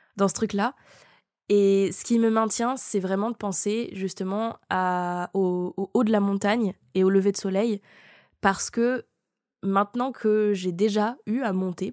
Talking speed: 170 wpm